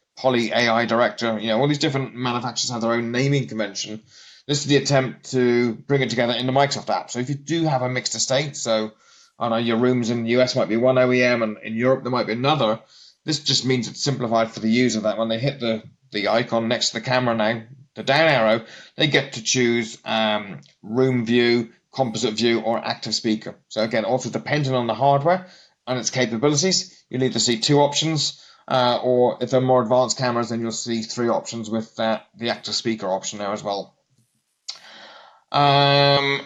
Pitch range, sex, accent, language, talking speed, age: 115-140 Hz, male, British, English, 210 wpm, 30-49